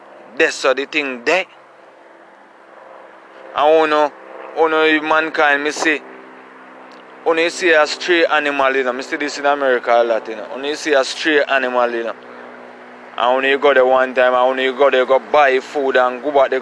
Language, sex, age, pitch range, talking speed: English, male, 20-39, 115-140 Hz, 195 wpm